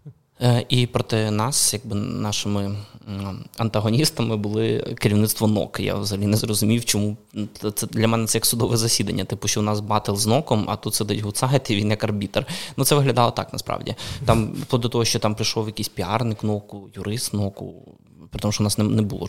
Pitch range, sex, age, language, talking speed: 105-120 Hz, male, 20-39, Ukrainian, 185 wpm